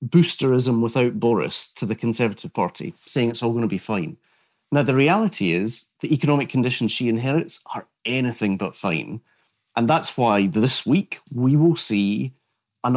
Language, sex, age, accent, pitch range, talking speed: English, male, 40-59, British, 110-145 Hz, 165 wpm